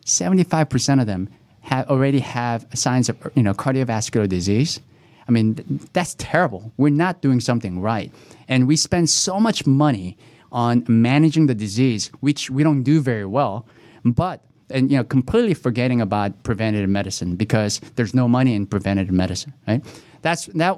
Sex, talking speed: male, 165 wpm